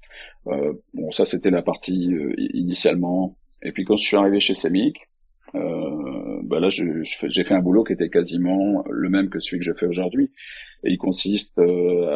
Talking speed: 205 wpm